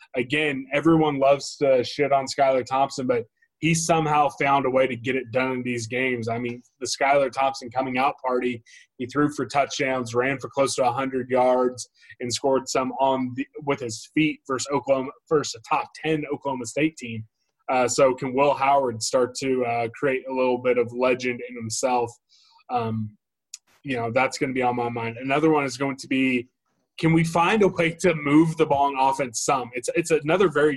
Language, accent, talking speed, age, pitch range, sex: English, American, 205 wpm, 20-39, 125-145 Hz, male